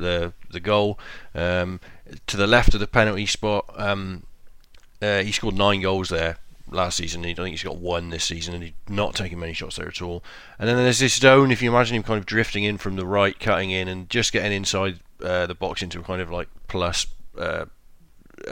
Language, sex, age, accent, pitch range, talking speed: English, male, 30-49, British, 90-110 Hz, 225 wpm